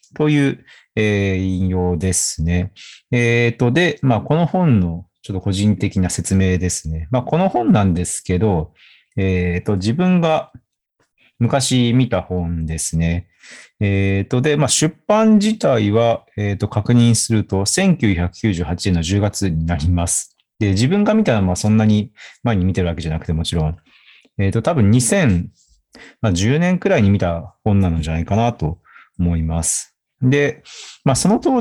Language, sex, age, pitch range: Japanese, male, 40-59, 90-135 Hz